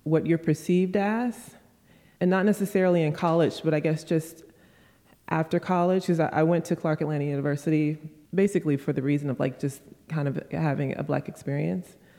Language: English